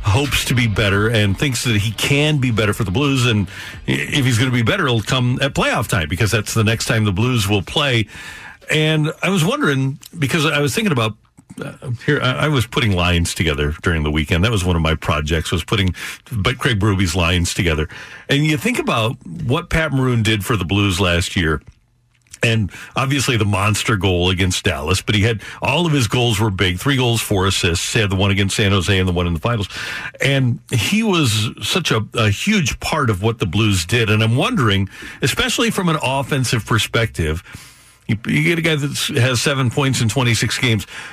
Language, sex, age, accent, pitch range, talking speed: English, male, 50-69, American, 100-140 Hz, 215 wpm